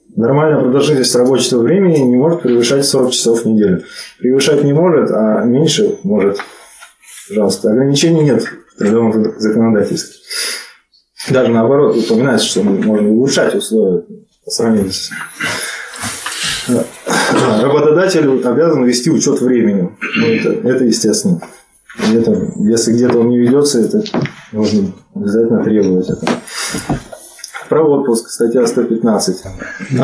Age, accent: 20-39, native